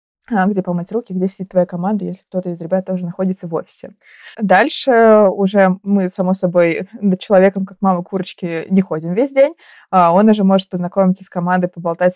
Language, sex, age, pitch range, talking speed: Russian, female, 20-39, 175-210 Hz, 180 wpm